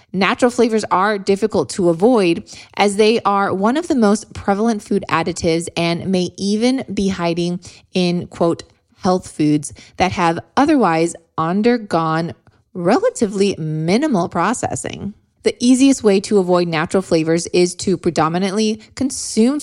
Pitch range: 170-220 Hz